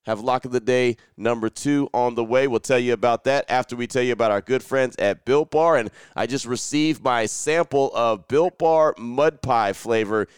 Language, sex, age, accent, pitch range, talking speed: English, male, 30-49, American, 115-140 Hz, 220 wpm